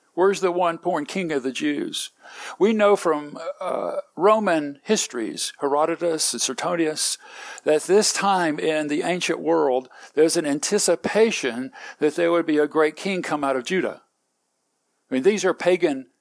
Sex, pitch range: male, 150-195 Hz